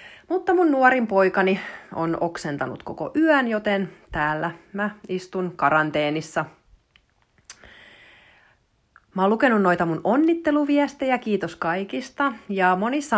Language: Finnish